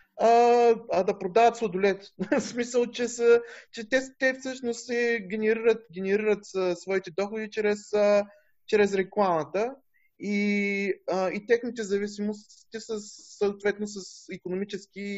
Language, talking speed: Bulgarian, 115 wpm